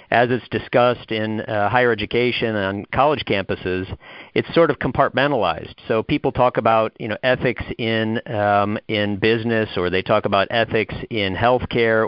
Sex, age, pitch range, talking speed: male, 50-69, 100-125 Hz, 165 wpm